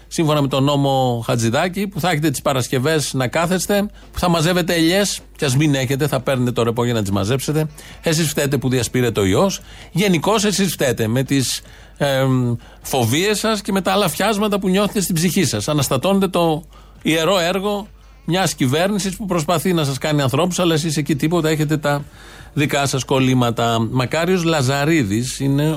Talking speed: 175 wpm